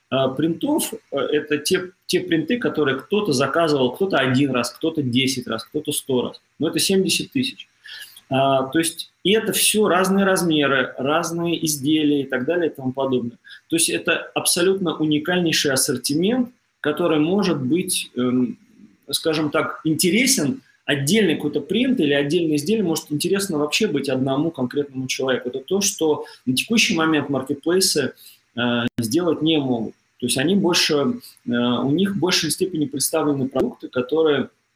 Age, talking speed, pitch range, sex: 30-49, 150 wpm, 130-180 Hz, male